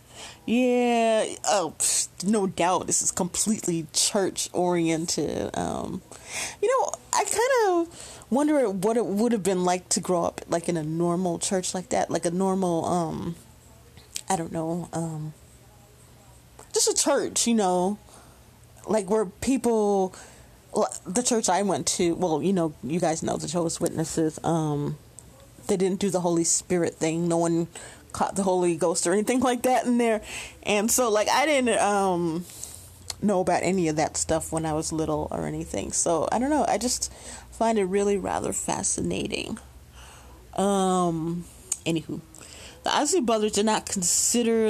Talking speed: 160 wpm